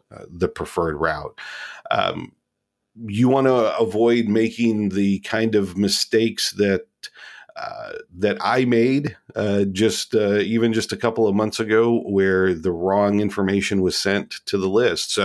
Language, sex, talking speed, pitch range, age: English, male, 150 wpm, 95-115 Hz, 40-59